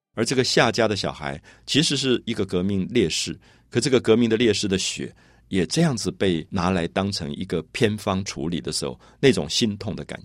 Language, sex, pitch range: Chinese, male, 90-130 Hz